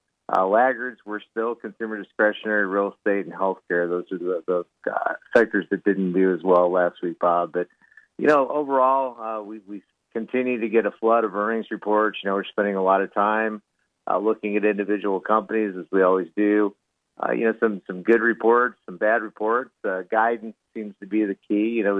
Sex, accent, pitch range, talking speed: male, American, 95-110 Hz, 205 wpm